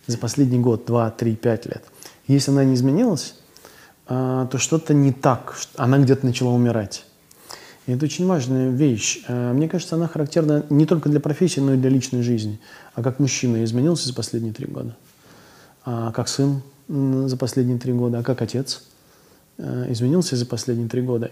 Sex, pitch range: male, 120-145 Hz